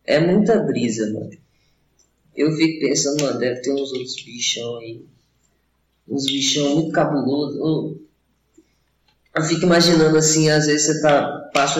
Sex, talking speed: female, 135 wpm